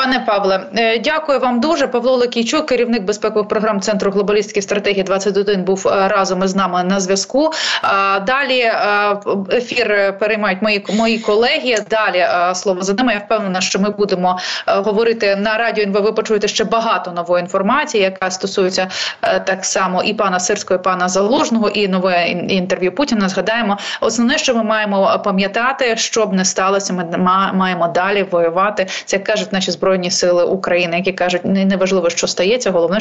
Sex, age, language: female, 20-39, Ukrainian